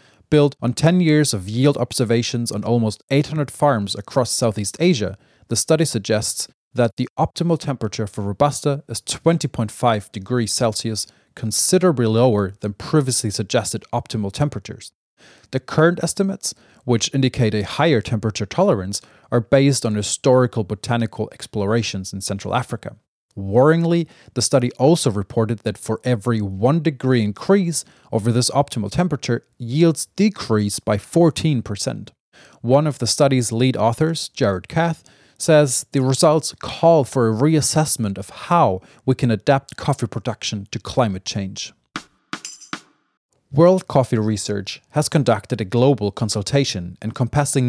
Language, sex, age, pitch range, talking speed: English, male, 30-49, 110-145 Hz, 130 wpm